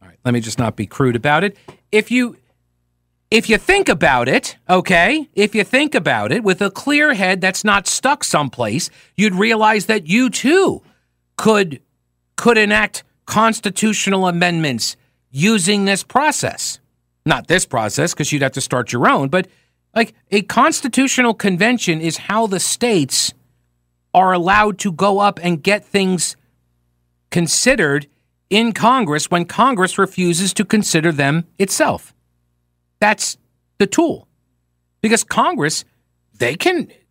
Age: 50-69